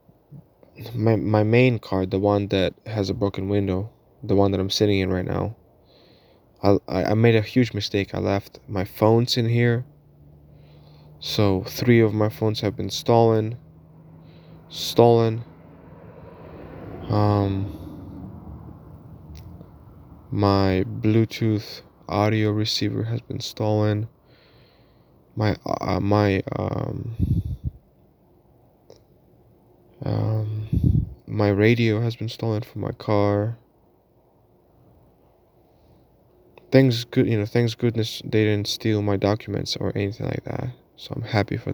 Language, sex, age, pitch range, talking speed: English, male, 20-39, 100-115 Hz, 115 wpm